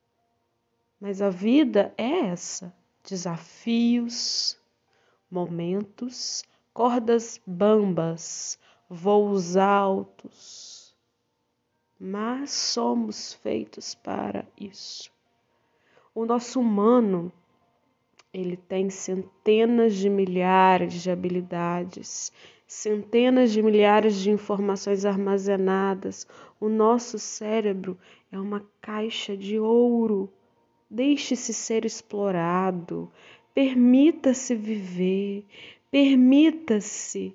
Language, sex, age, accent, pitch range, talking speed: Portuguese, female, 20-39, Brazilian, 190-245 Hz, 70 wpm